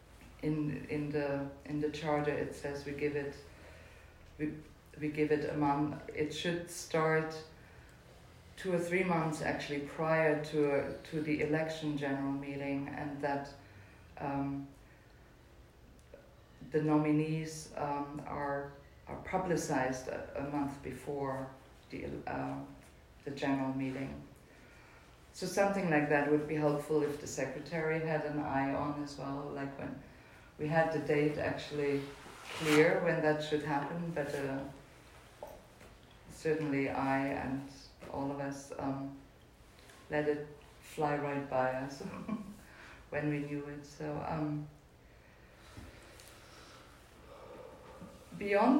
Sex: female